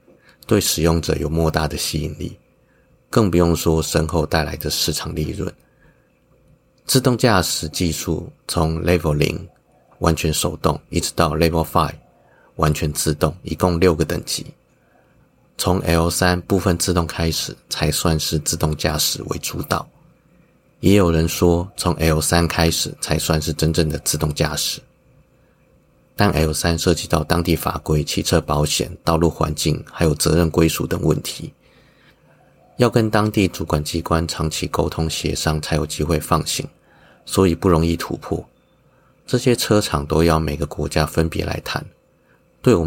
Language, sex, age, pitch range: Chinese, male, 30-49, 80-90 Hz